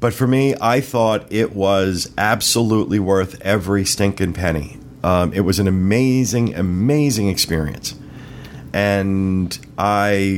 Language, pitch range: English, 100-135 Hz